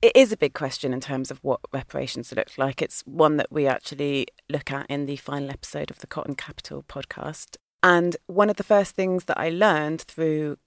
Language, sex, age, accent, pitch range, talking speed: English, female, 30-49, British, 145-175 Hz, 215 wpm